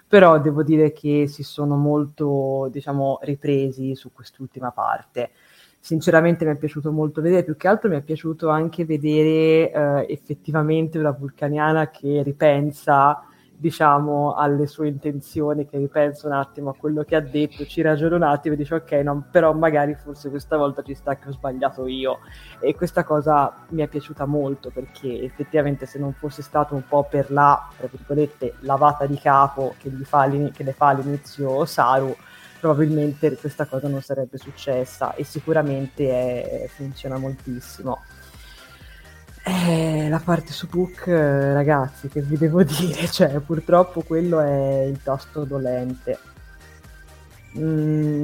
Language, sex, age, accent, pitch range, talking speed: Italian, female, 20-39, native, 135-155 Hz, 155 wpm